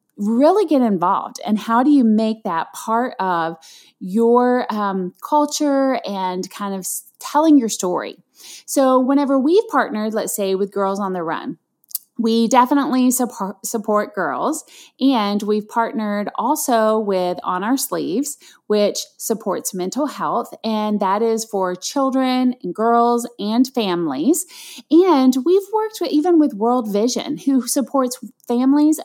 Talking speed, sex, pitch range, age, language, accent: 140 wpm, female, 200-275 Hz, 30-49, English, American